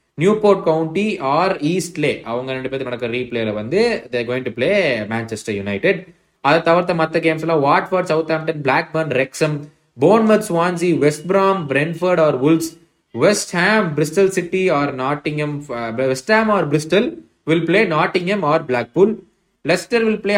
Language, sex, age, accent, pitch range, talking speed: Tamil, male, 20-39, native, 130-180 Hz, 125 wpm